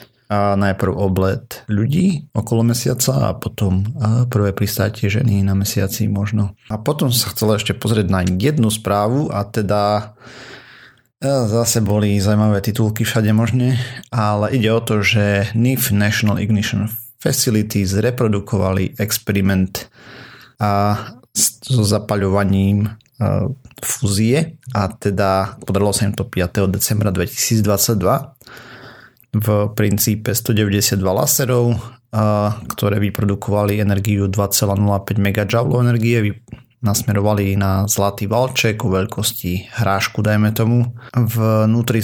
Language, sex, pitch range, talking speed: Slovak, male, 100-120 Hz, 105 wpm